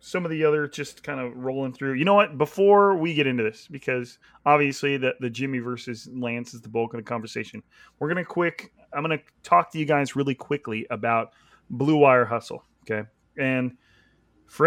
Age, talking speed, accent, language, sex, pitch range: 30-49, 205 wpm, American, English, male, 120-150 Hz